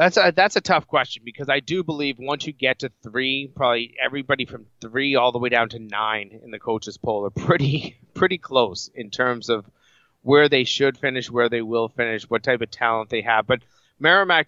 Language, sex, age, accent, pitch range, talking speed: English, male, 30-49, American, 115-135 Hz, 215 wpm